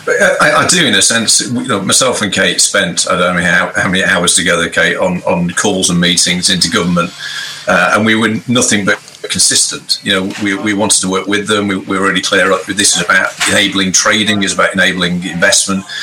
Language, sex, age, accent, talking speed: English, male, 40-59, British, 220 wpm